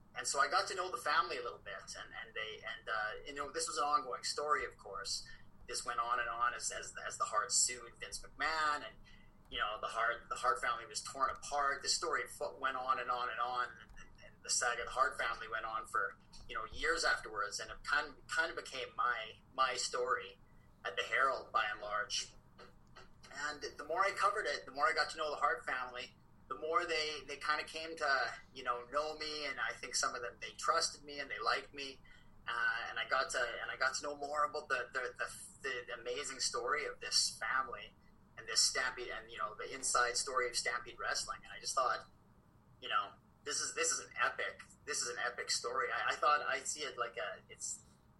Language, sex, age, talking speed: English, male, 30-49, 230 wpm